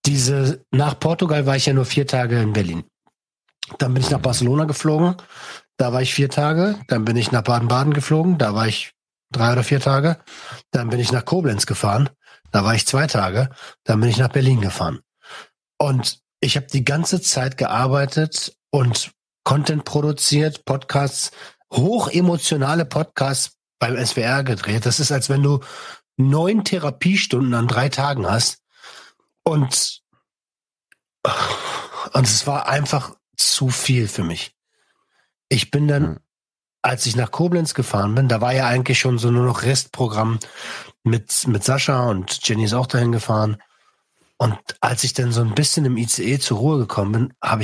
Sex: male